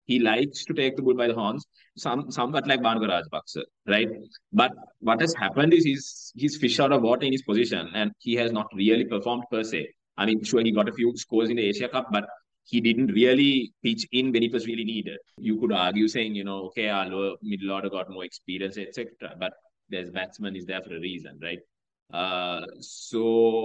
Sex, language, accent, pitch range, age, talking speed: male, English, Indian, 90-115 Hz, 20-39, 215 wpm